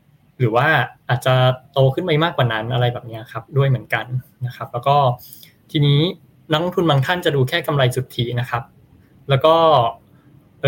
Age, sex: 20-39, male